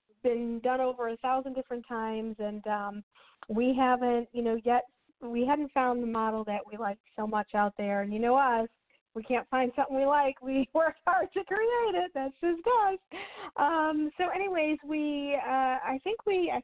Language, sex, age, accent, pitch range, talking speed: English, female, 40-59, American, 225-285 Hz, 195 wpm